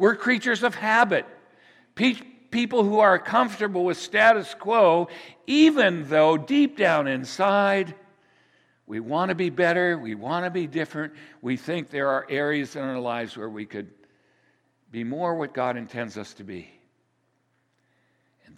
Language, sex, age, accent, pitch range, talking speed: English, male, 60-79, American, 140-220 Hz, 150 wpm